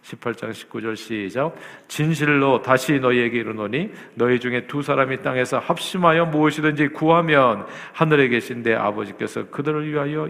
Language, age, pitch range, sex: Korean, 50-69, 115-160 Hz, male